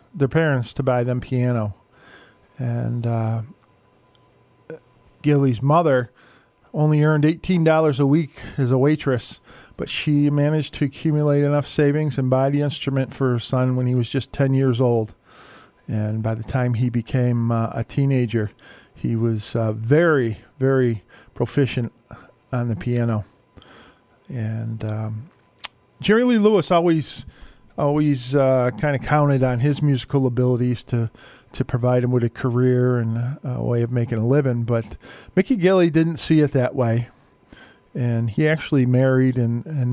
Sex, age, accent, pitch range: male, 40-59, American, 120-145 Hz